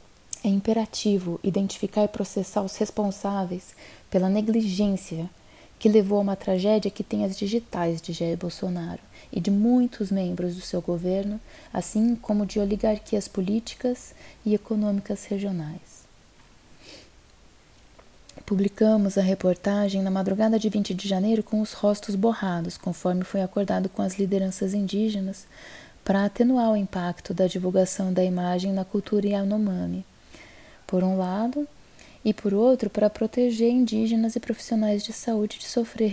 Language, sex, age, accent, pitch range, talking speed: Portuguese, female, 20-39, Brazilian, 190-220 Hz, 135 wpm